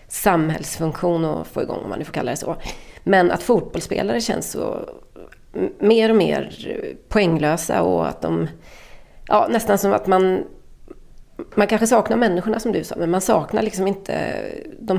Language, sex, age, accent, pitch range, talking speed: Swedish, female, 30-49, native, 170-220 Hz, 165 wpm